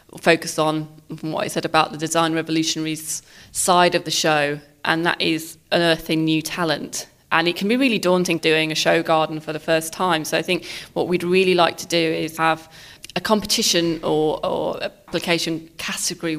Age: 20-39